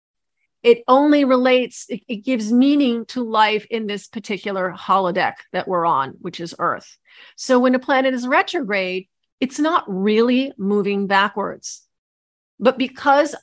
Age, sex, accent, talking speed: 40-59, female, American, 140 wpm